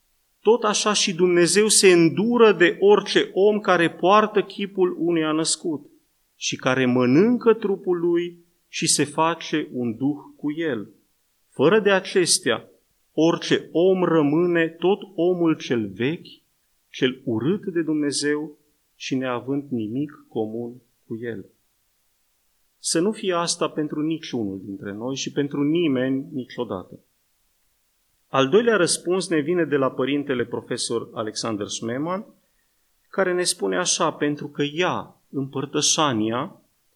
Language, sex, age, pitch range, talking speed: Romanian, male, 30-49, 130-180 Hz, 125 wpm